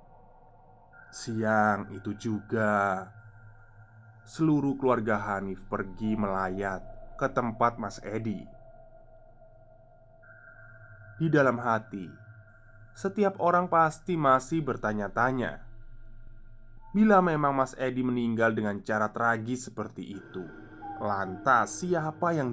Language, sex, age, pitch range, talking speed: Indonesian, male, 20-39, 110-130 Hz, 90 wpm